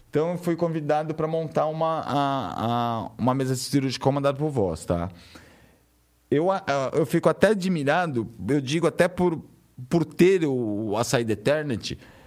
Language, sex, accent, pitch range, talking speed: Portuguese, male, Brazilian, 105-155 Hz, 160 wpm